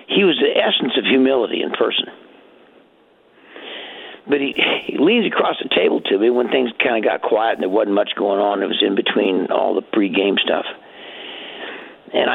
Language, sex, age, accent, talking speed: English, male, 60-79, American, 185 wpm